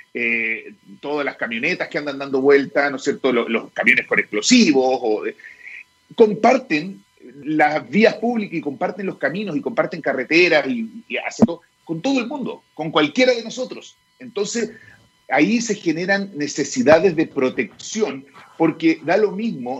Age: 40-59